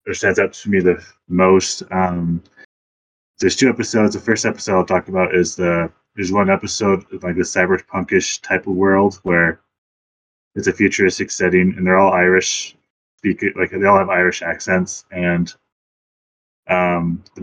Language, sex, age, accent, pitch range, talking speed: English, male, 20-39, Canadian, 85-95 Hz, 155 wpm